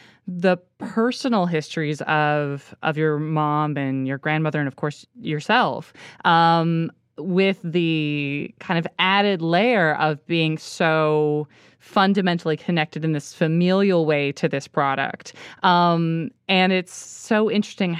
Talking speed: 125 wpm